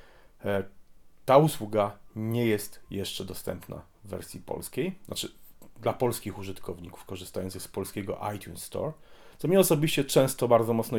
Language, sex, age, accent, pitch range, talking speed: Polish, male, 40-59, native, 90-110 Hz, 130 wpm